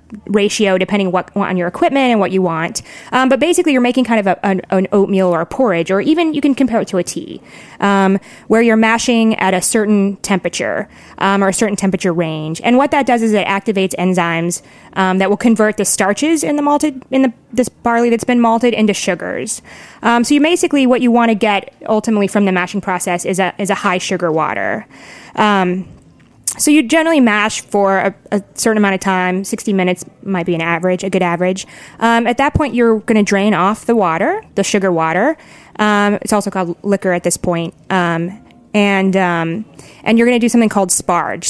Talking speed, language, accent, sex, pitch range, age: 210 wpm, English, American, female, 185-235 Hz, 20-39